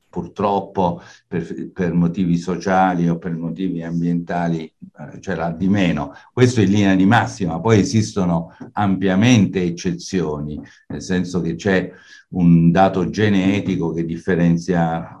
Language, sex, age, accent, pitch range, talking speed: Italian, male, 60-79, native, 85-95 Hz, 120 wpm